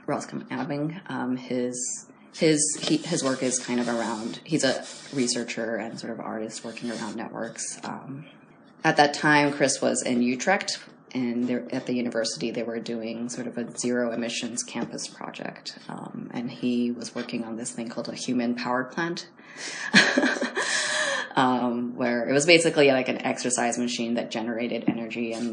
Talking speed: 160 wpm